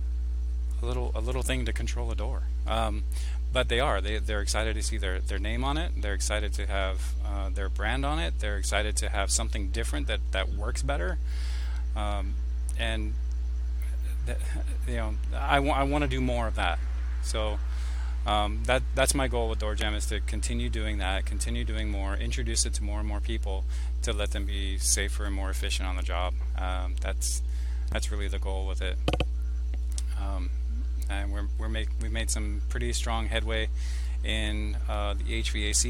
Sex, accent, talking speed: male, American, 190 wpm